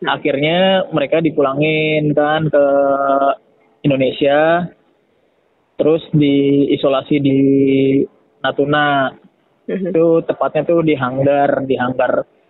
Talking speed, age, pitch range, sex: 80 wpm, 20-39, 140-165 Hz, male